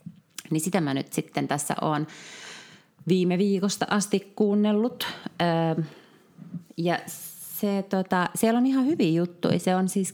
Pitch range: 150-195 Hz